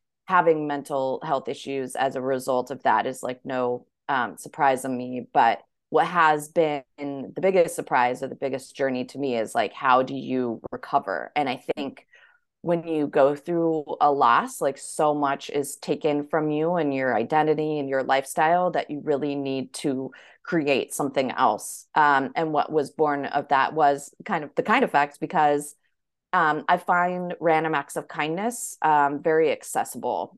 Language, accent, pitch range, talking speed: English, American, 135-155 Hz, 180 wpm